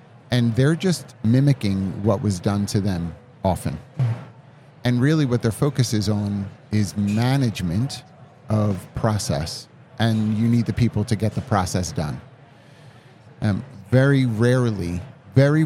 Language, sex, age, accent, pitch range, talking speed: English, male, 30-49, American, 105-130 Hz, 135 wpm